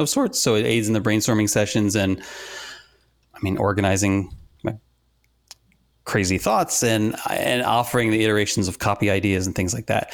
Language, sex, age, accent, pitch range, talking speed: English, male, 30-49, American, 100-120 Hz, 165 wpm